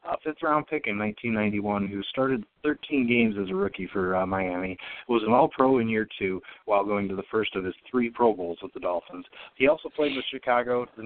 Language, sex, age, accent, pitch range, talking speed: English, male, 30-49, American, 100-120 Hz, 215 wpm